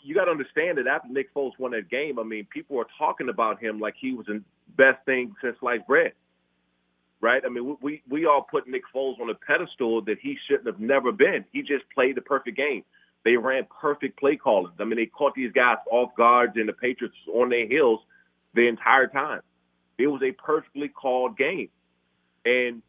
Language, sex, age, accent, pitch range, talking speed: English, male, 30-49, American, 115-165 Hz, 210 wpm